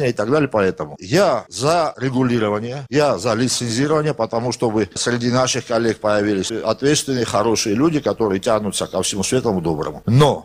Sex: male